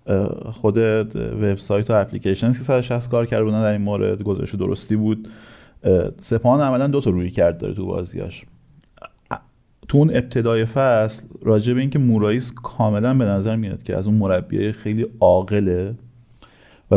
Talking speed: 150 wpm